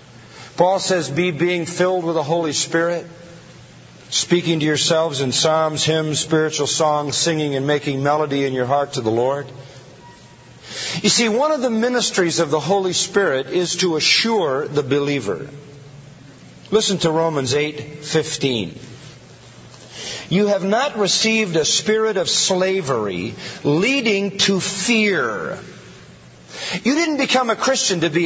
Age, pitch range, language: 50-69, 145-215 Hz, English